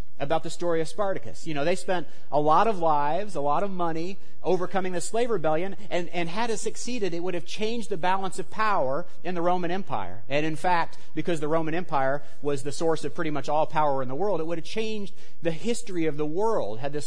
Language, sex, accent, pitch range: English, male, American, 145-185 Hz